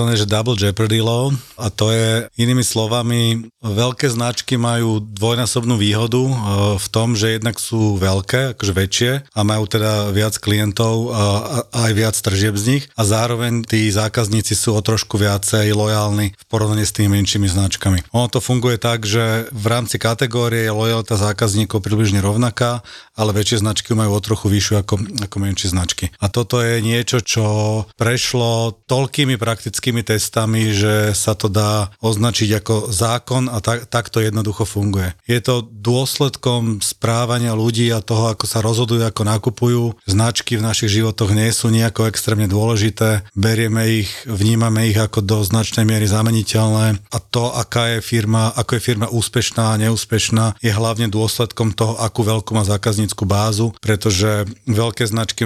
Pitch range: 105-115 Hz